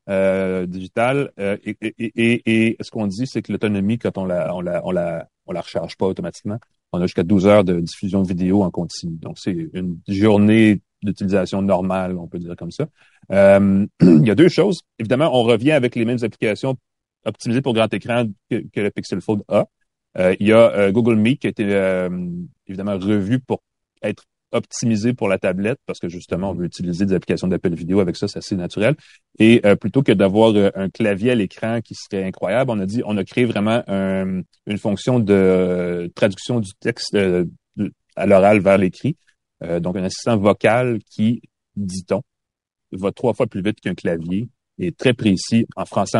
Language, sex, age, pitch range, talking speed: French, male, 30-49, 95-115 Hz, 205 wpm